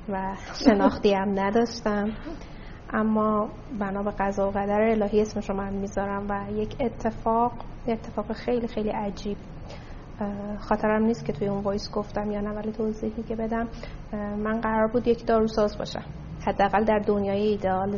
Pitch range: 205-225 Hz